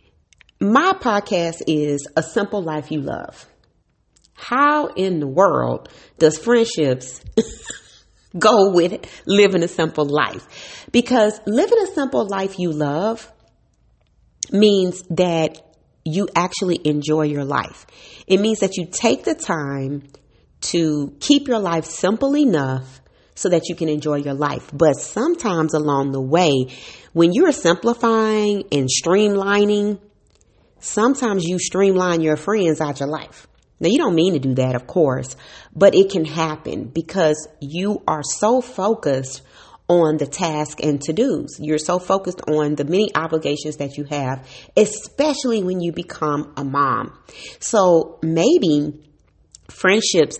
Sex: female